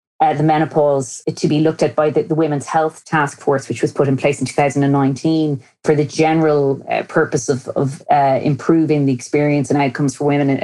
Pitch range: 150-185 Hz